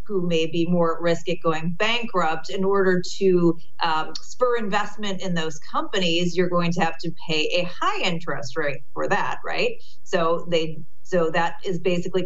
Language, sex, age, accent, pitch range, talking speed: English, female, 30-49, American, 165-195 Hz, 180 wpm